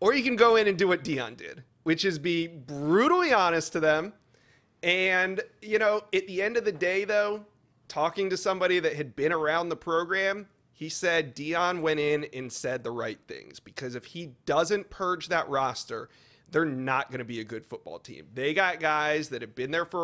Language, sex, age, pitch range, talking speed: English, male, 30-49, 145-190 Hz, 210 wpm